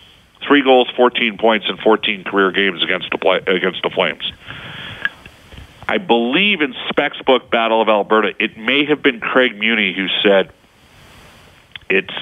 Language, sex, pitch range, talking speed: English, male, 105-130 Hz, 150 wpm